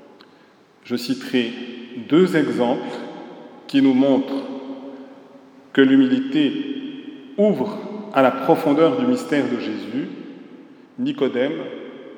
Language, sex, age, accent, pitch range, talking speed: French, male, 40-59, French, 130-210 Hz, 90 wpm